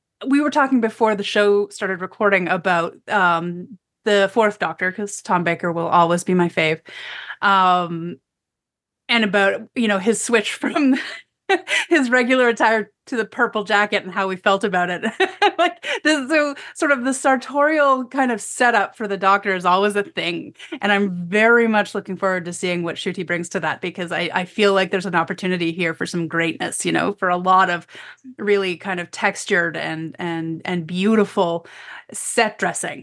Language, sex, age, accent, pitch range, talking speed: English, female, 30-49, American, 180-225 Hz, 180 wpm